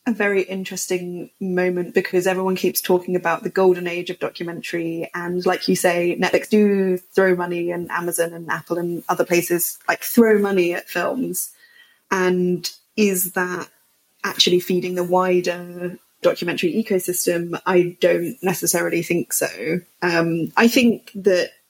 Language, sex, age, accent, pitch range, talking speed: English, female, 20-39, British, 175-190 Hz, 145 wpm